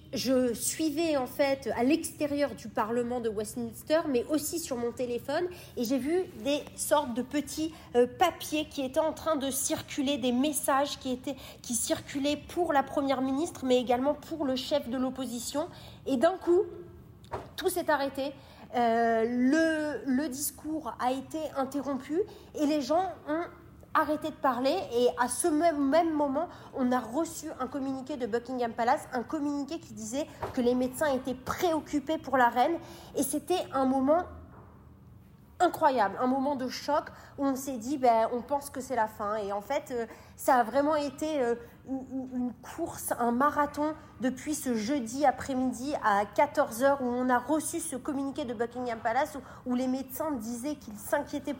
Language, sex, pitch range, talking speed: French, female, 250-305 Hz, 170 wpm